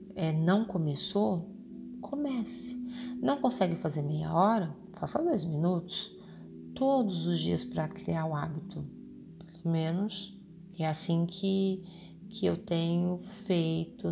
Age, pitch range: 40-59, 155-220 Hz